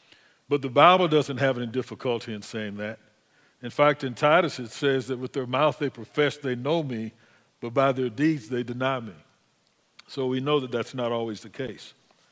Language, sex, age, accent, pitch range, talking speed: English, male, 50-69, American, 125-150 Hz, 200 wpm